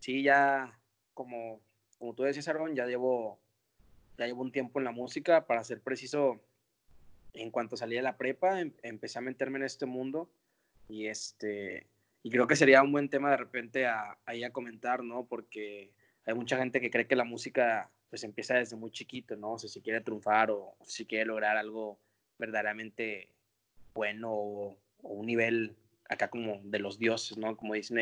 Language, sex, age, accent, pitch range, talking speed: Spanish, male, 20-39, Mexican, 110-135 Hz, 185 wpm